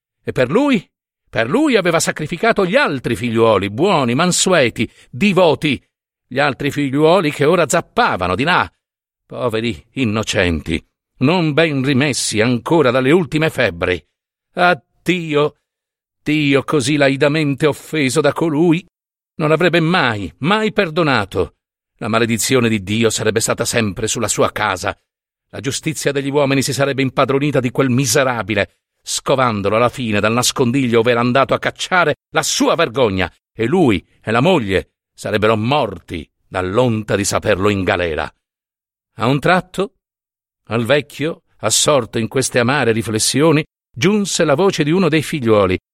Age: 50-69